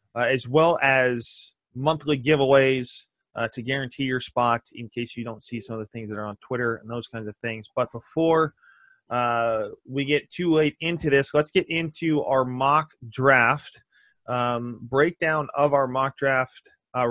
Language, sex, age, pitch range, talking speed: English, male, 20-39, 120-145 Hz, 180 wpm